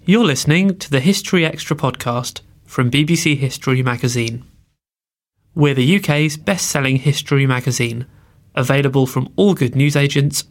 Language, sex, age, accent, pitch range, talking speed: English, male, 30-49, British, 125-150 Hz, 130 wpm